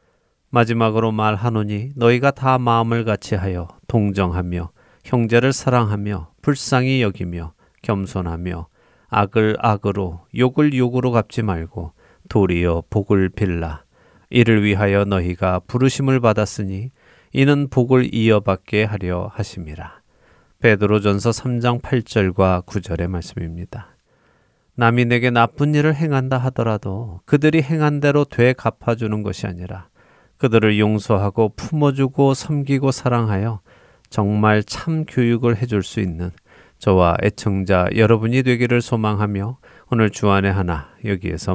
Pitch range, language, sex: 95-125 Hz, Korean, male